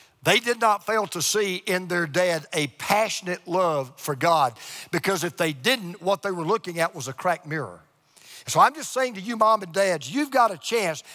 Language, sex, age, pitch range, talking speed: English, male, 50-69, 160-220 Hz, 215 wpm